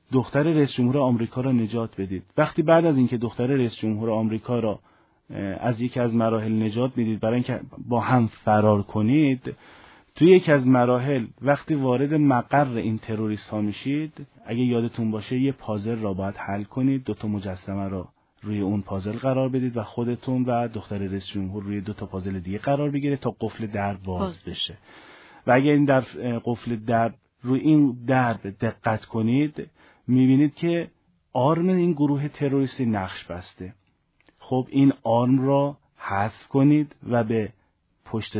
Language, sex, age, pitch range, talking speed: Persian, male, 30-49, 105-135 Hz, 160 wpm